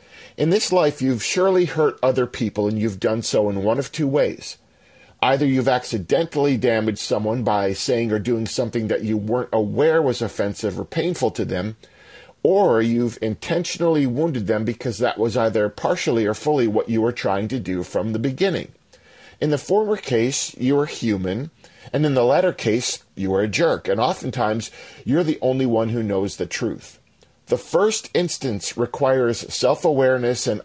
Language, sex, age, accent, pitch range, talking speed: English, male, 40-59, American, 115-145 Hz, 175 wpm